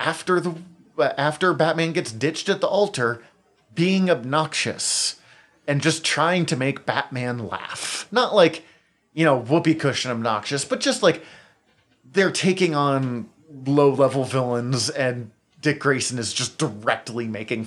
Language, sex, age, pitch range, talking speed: English, male, 30-49, 120-155 Hz, 135 wpm